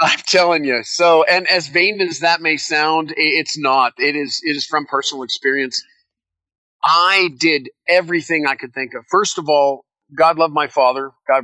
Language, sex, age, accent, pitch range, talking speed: English, male, 40-59, American, 130-170 Hz, 180 wpm